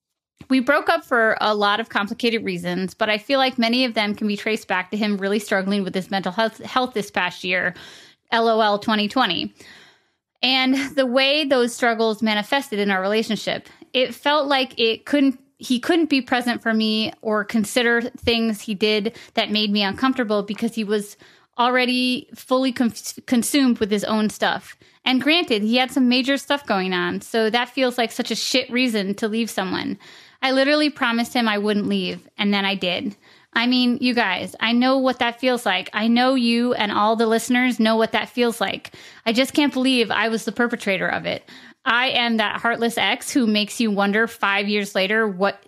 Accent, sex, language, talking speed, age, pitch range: American, female, English, 195 wpm, 20-39, 210-250 Hz